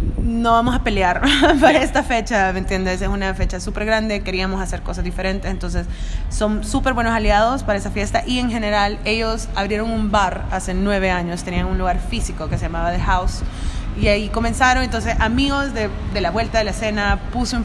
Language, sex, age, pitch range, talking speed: English, female, 20-39, 170-220 Hz, 200 wpm